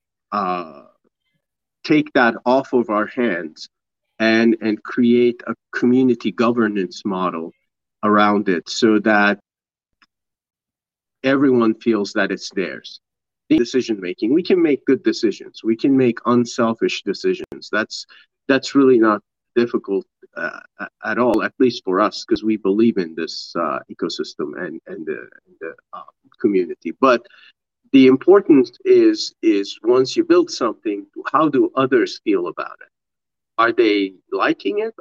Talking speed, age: 135 wpm, 40-59